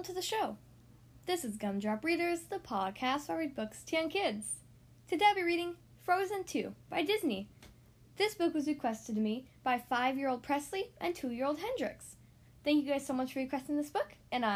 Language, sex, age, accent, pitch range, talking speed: English, female, 10-29, American, 210-325 Hz, 190 wpm